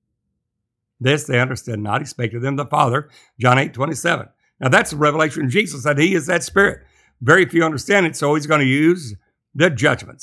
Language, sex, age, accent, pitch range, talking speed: English, male, 60-79, American, 120-155 Hz, 205 wpm